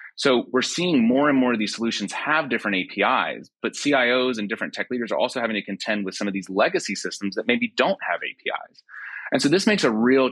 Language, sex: English, male